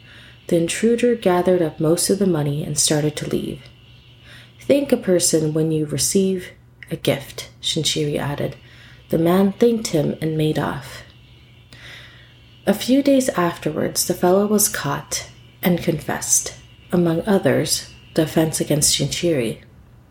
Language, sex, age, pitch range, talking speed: English, female, 30-49, 125-185 Hz, 135 wpm